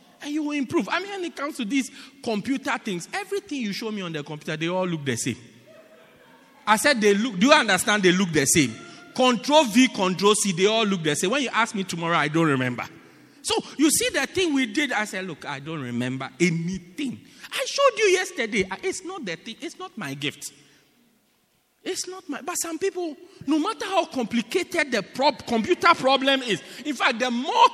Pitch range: 195-295 Hz